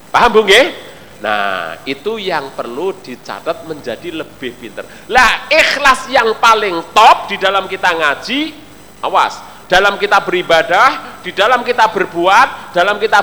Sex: male